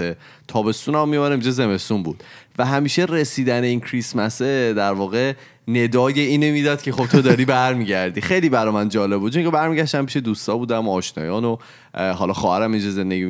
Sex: male